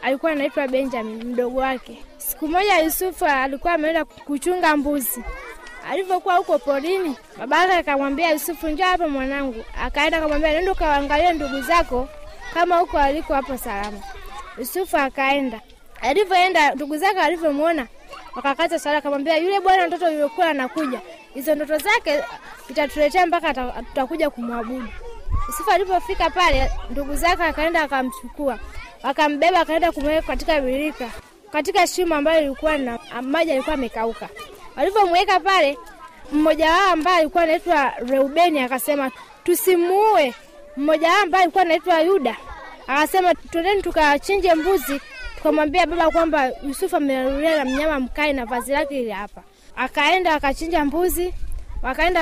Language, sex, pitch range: Swahili, female, 275-345 Hz